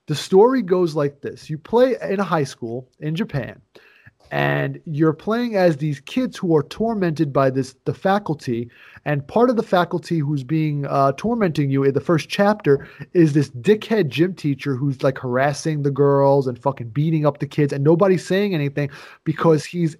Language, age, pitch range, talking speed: English, 30-49, 145-180 Hz, 185 wpm